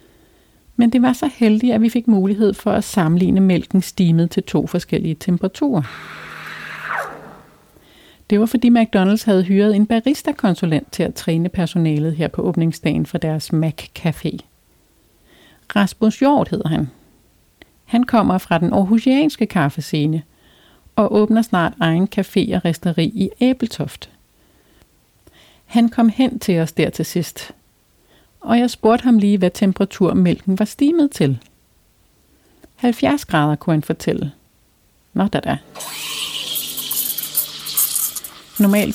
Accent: native